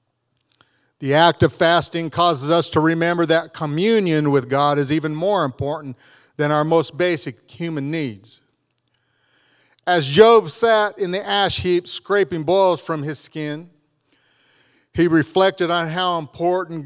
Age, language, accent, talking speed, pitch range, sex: 40-59, English, American, 140 wpm, 145-175 Hz, male